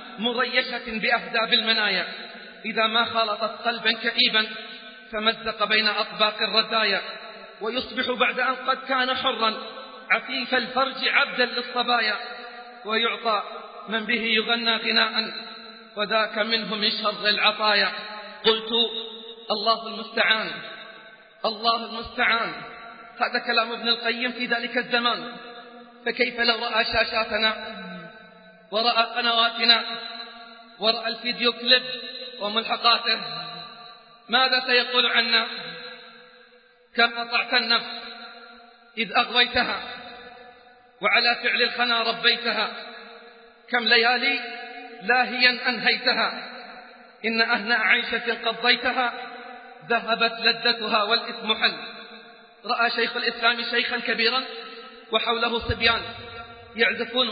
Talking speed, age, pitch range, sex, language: 90 wpm, 40-59, 225-240 Hz, male, Arabic